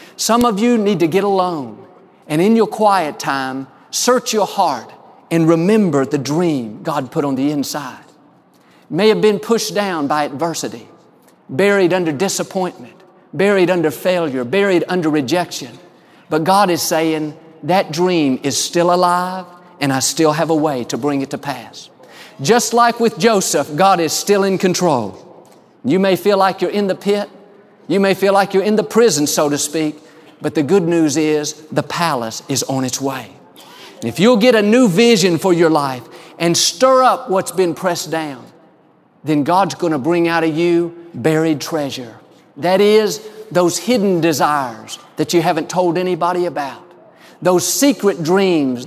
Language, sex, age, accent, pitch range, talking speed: English, male, 50-69, American, 150-195 Hz, 170 wpm